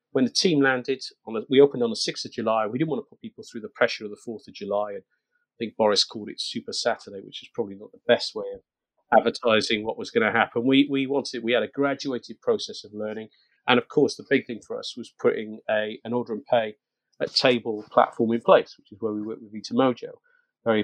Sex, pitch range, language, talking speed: male, 110-165 Hz, English, 245 wpm